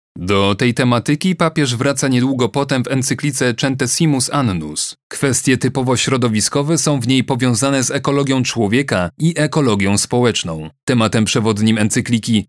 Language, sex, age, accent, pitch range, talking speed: Polish, male, 30-49, native, 110-140 Hz, 130 wpm